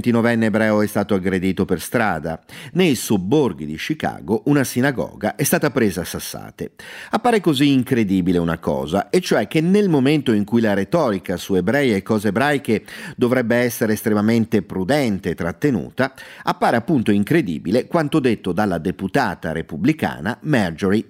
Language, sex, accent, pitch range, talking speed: Italian, male, native, 100-140 Hz, 150 wpm